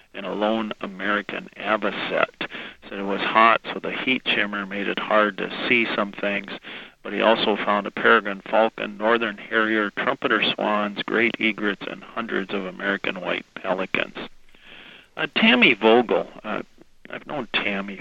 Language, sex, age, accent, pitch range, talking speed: English, male, 50-69, American, 100-110 Hz, 155 wpm